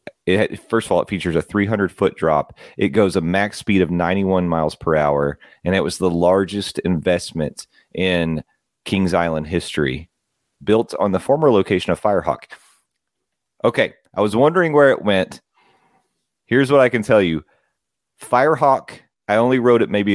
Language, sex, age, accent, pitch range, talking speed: English, male, 30-49, American, 85-105 Hz, 160 wpm